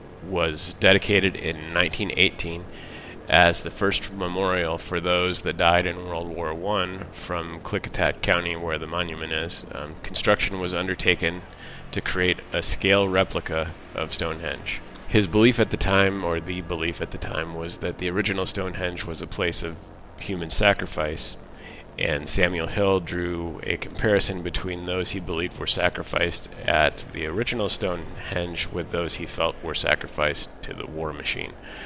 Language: English